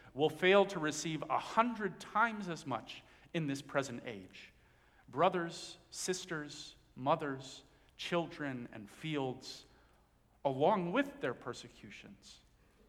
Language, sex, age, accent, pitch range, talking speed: English, male, 40-59, American, 125-165 Hz, 105 wpm